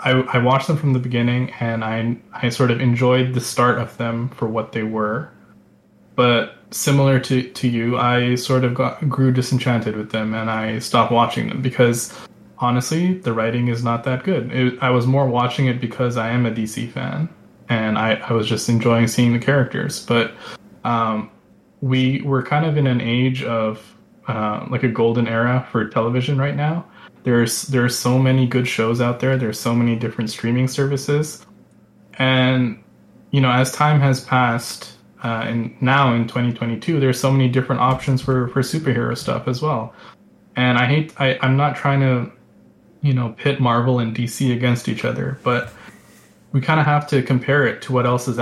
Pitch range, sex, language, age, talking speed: 115-135 Hz, male, English, 20-39, 190 wpm